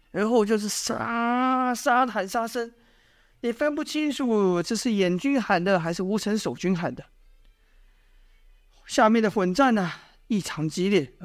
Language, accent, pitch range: Chinese, native, 180-245 Hz